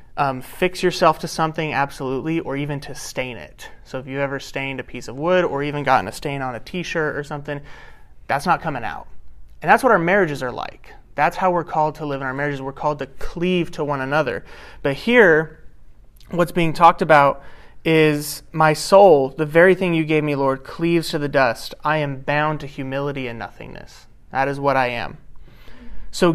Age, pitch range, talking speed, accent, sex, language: 30-49, 130-155 Hz, 205 wpm, American, male, English